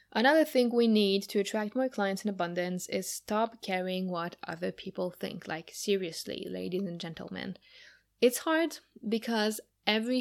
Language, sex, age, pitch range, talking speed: English, female, 20-39, 180-215 Hz, 155 wpm